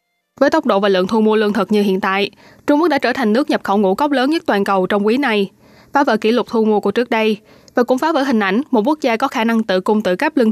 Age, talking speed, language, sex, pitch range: 20-39, 315 wpm, Vietnamese, female, 210-255 Hz